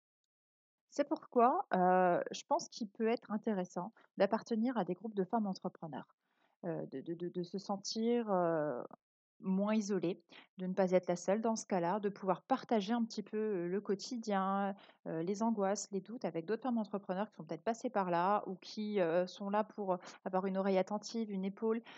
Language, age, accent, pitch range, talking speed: French, 30-49, French, 180-225 Hz, 185 wpm